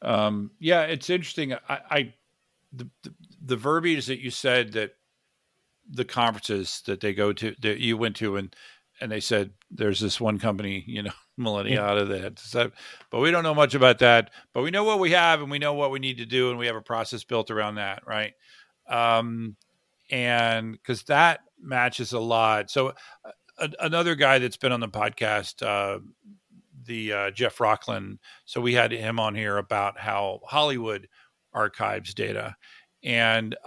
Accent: American